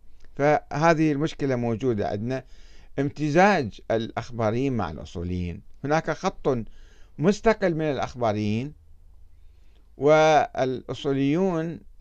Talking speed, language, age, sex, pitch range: 70 wpm, Arabic, 50-69, male, 100-155 Hz